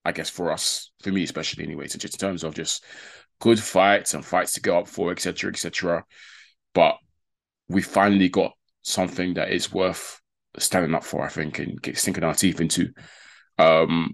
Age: 20-39